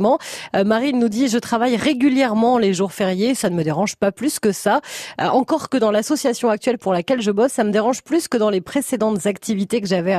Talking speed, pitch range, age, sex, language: 225 wpm, 205-265 Hz, 30-49, female, French